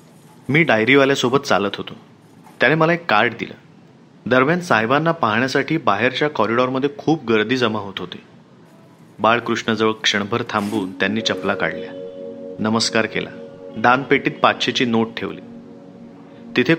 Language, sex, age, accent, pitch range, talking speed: Marathi, male, 30-49, native, 105-140 Hz, 115 wpm